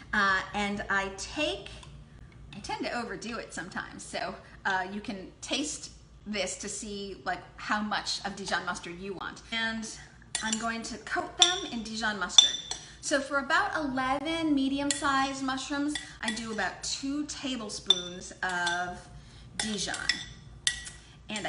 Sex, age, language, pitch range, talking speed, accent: female, 30-49, English, 200-270 Hz, 135 wpm, American